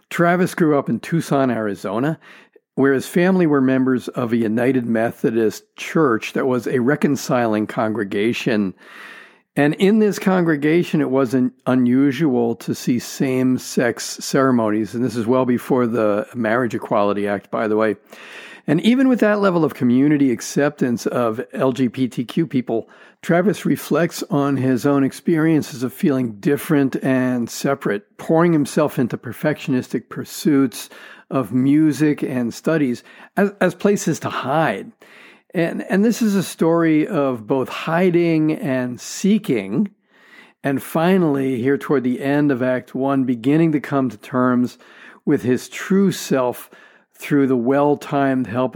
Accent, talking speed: American, 140 wpm